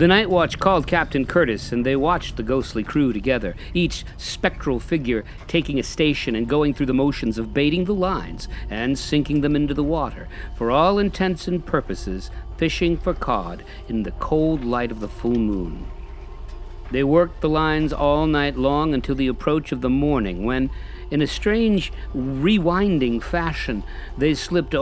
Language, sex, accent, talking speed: English, male, American, 170 wpm